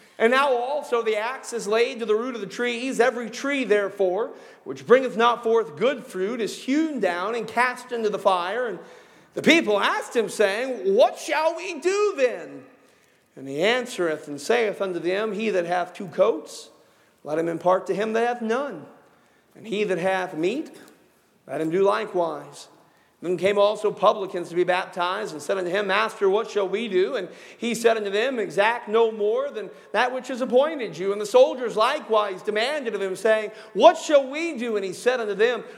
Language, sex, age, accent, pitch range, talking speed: English, male, 40-59, American, 185-265 Hz, 195 wpm